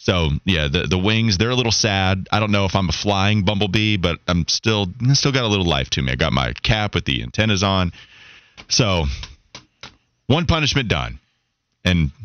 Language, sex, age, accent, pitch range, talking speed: English, male, 30-49, American, 90-125 Hz, 195 wpm